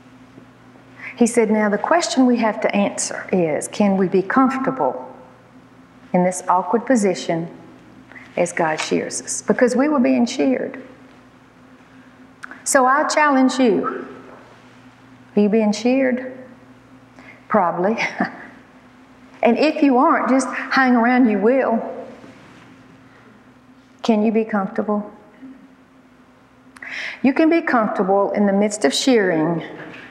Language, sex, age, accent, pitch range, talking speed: English, female, 50-69, American, 190-265 Hz, 115 wpm